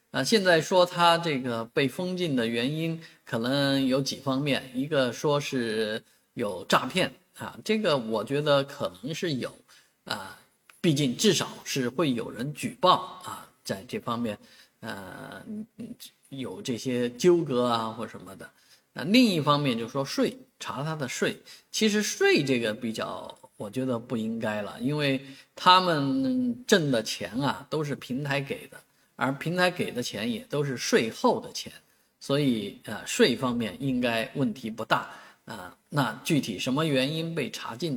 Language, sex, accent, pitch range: Chinese, male, native, 120-165 Hz